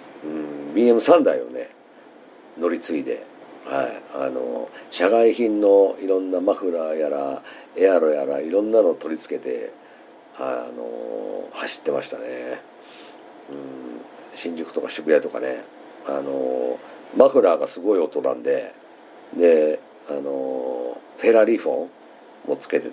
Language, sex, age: Japanese, male, 50-69